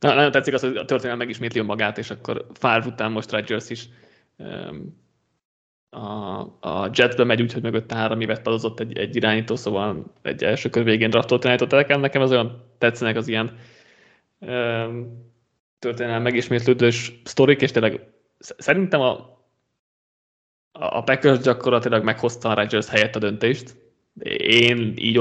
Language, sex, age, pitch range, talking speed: Hungarian, male, 20-39, 110-125 Hz, 145 wpm